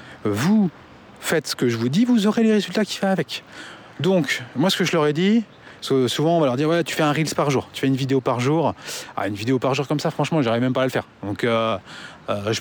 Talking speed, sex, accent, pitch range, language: 275 wpm, male, French, 130-175 Hz, French